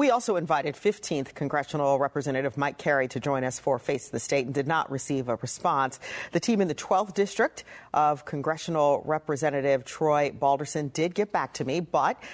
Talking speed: 185 wpm